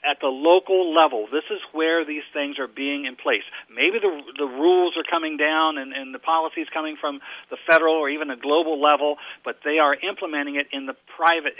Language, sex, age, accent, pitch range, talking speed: English, male, 50-69, American, 140-170 Hz, 210 wpm